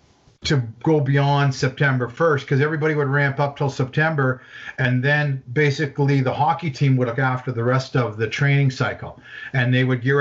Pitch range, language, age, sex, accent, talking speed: 125-145 Hz, English, 50-69, male, American, 180 wpm